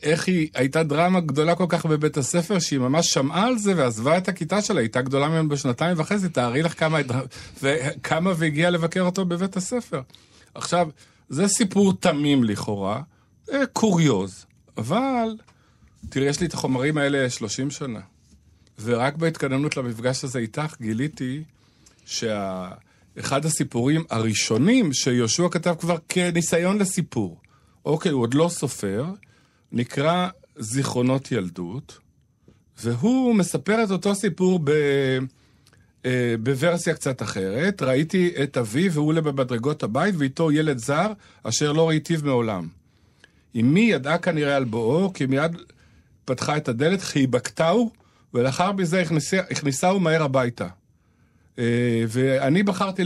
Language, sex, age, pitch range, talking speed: Hebrew, male, 50-69, 125-175 Hz, 130 wpm